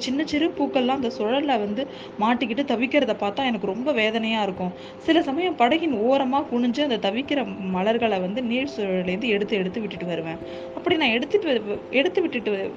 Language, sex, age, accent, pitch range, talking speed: Tamil, female, 20-39, native, 195-260 Hz, 155 wpm